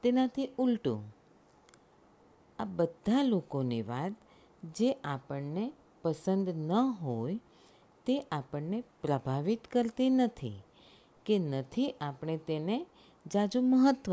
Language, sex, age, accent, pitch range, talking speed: Gujarati, female, 50-69, native, 145-225 Hz, 95 wpm